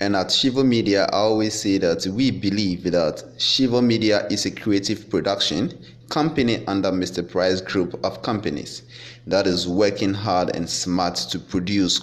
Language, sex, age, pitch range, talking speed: English, male, 30-49, 90-110 Hz, 160 wpm